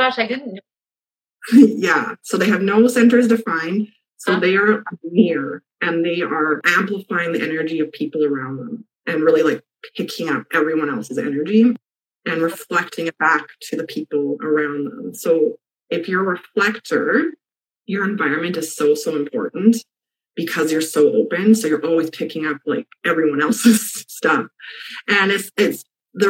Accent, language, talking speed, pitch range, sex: American, English, 155 wpm, 150-205 Hz, female